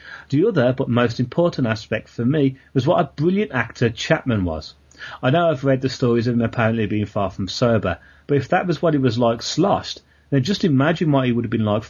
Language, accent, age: English, British, 30-49